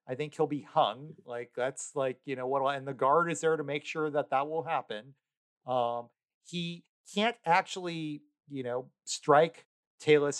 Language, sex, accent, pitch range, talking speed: English, male, American, 115-155 Hz, 180 wpm